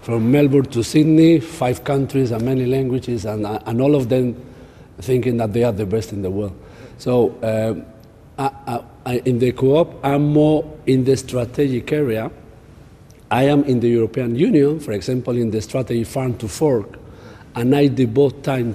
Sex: male